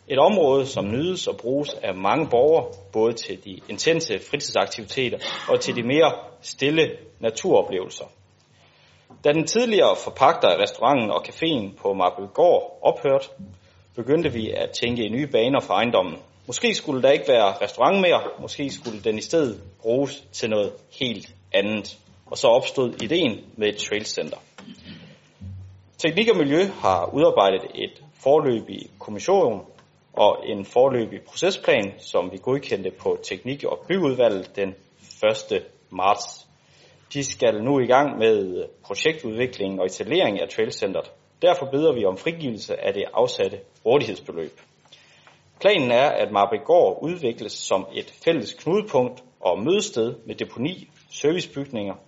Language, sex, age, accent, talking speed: Danish, male, 30-49, native, 140 wpm